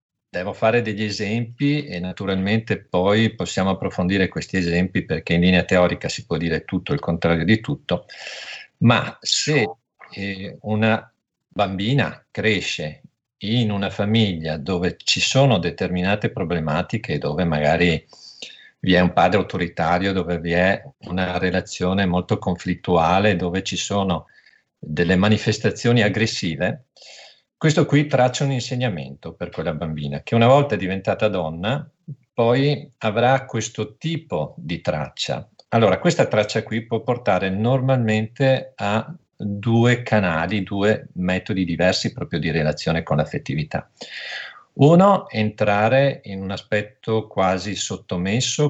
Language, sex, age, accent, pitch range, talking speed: Italian, male, 50-69, native, 90-120 Hz, 125 wpm